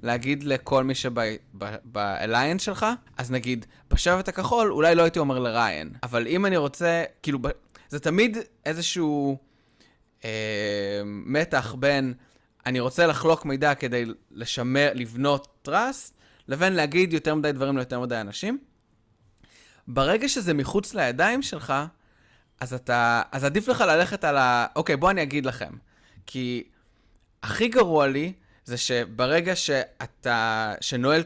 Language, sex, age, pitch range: Hebrew, male, 20-39, 120-170 Hz